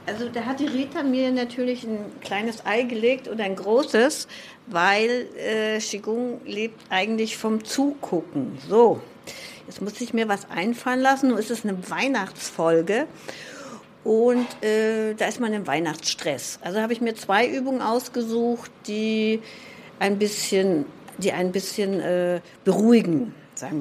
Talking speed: 145 wpm